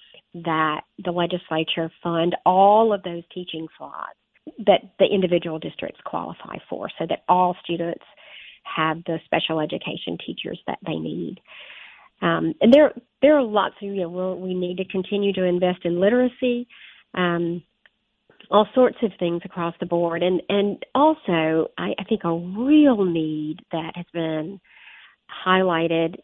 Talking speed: 150 wpm